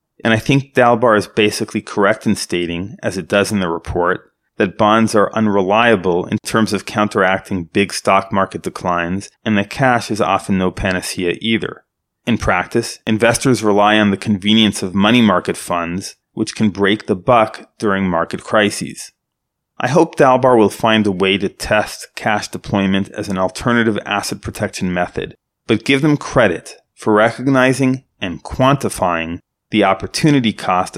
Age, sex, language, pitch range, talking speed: 30-49, male, English, 95-120 Hz, 160 wpm